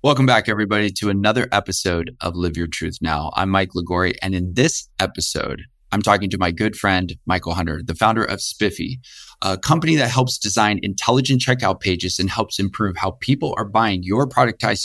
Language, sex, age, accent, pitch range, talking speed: English, male, 30-49, American, 95-125 Hz, 190 wpm